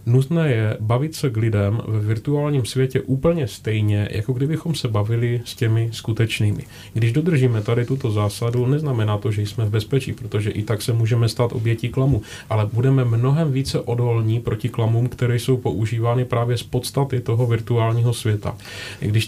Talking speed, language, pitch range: 170 wpm, Czech, 110-130 Hz